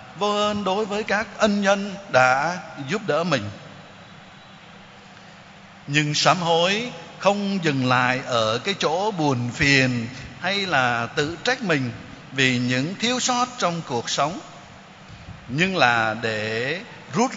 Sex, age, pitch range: male, 60-79, 140-185 Hz